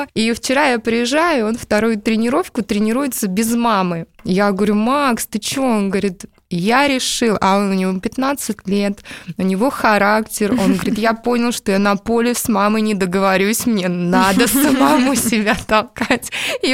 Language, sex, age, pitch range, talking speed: Russian, female, 20-39, 200-235 Hz, 160 wpm